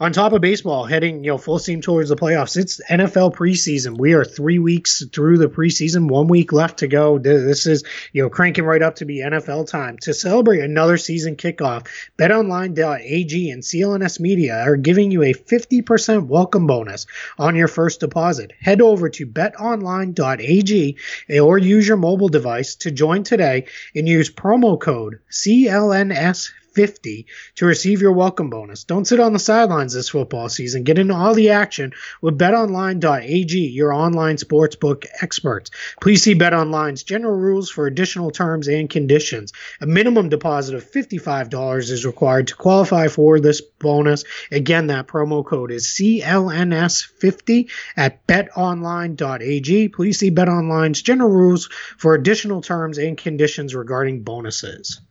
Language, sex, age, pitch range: English, male, 20-39, 145-190 Hz